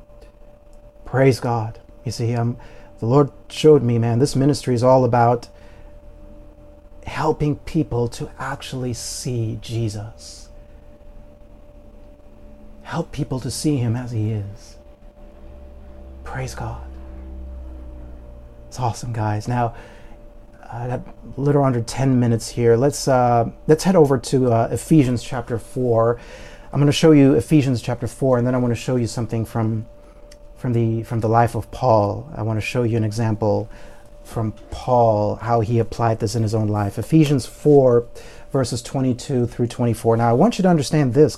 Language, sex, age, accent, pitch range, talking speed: English, male, 40-59, American, 110-130 Hz, 155 wpm